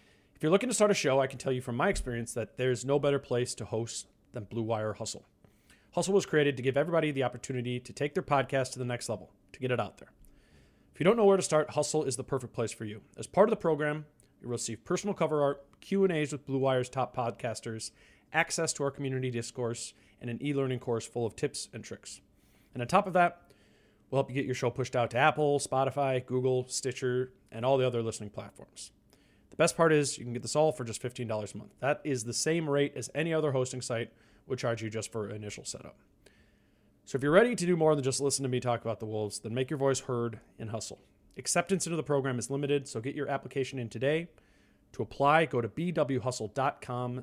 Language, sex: English, male